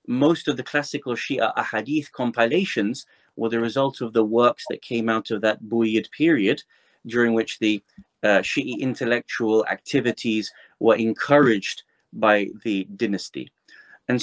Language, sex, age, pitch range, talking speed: English, male, 30-49, 115-135 Hz, 140 wpm